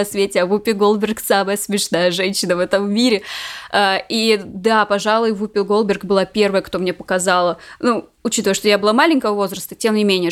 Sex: female